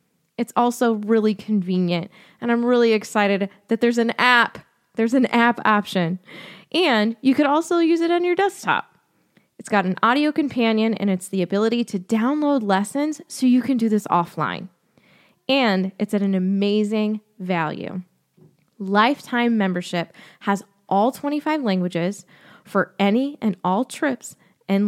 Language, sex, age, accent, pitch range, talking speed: English, female, 20-39, American, 185-235 Hz, 145 wpm